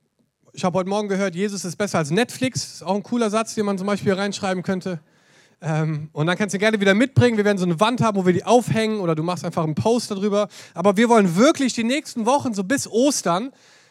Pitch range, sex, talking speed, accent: 175-225 Hz, male, 245 wpm, German